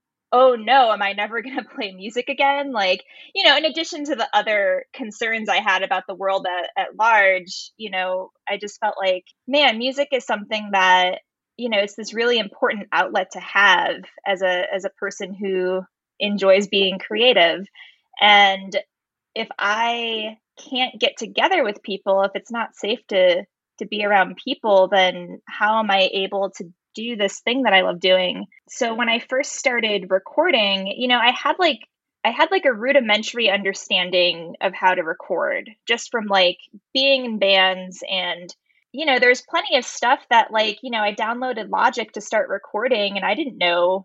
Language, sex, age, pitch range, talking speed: English, female, 10-29, 195-245 Hz, 185 wpm